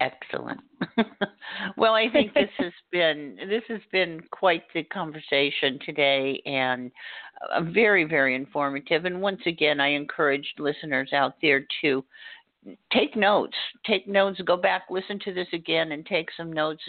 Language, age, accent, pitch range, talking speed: English, 50-69, American, 145-185 Hz, 150 wpm